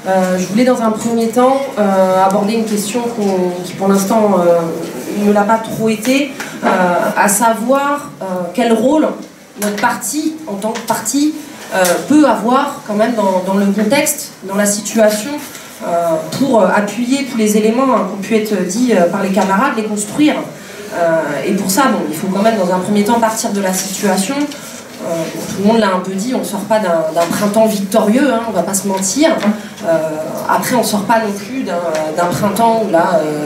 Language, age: French, 20-39